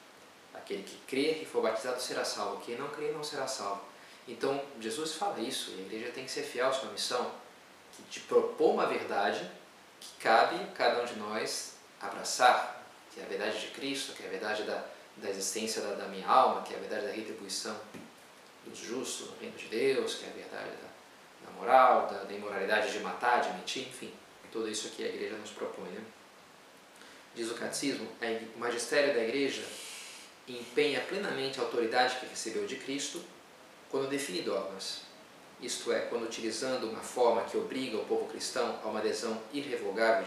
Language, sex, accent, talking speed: Portuguese, male, Brazilian, 190 wpm